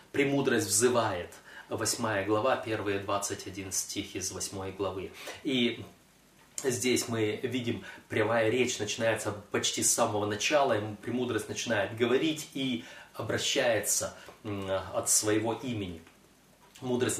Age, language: 30-49, Russian